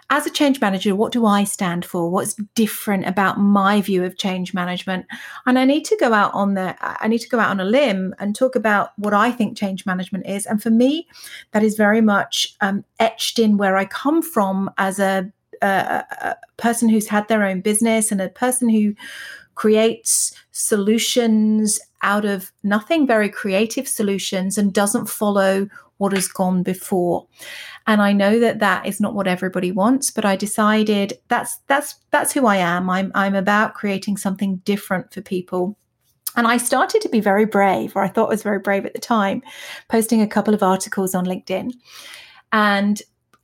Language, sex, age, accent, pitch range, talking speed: English, female, 40-59, British, 195-230 Hz, 190 wpm